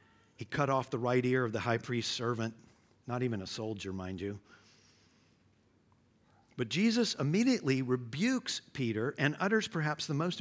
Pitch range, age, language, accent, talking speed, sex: 110-165 Hz, 50-69, English, American, 155 wpm, male